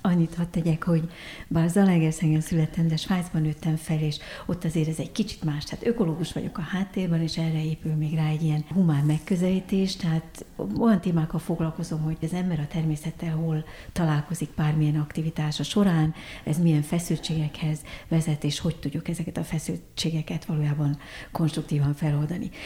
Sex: female